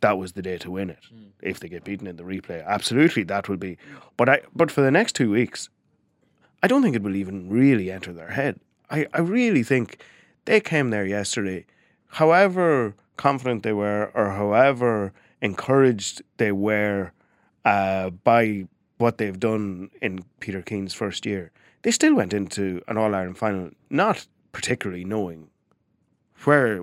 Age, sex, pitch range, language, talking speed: 30-49, male, 95-125 Hz, English, 165 wpm